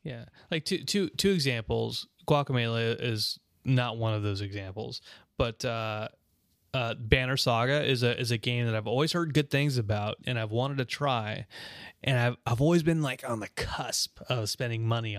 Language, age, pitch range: English, 20-39, 110-135 Hz